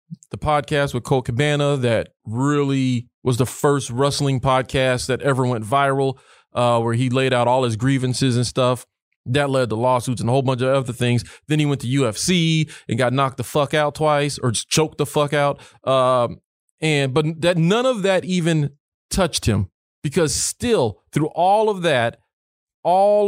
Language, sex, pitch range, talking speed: English, male, 130-175 Hz, 185 wpm